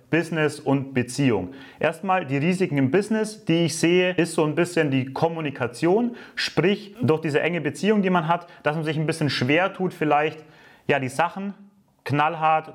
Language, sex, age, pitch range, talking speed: English, male, 30-49, 140-175 Hz, 170 wpm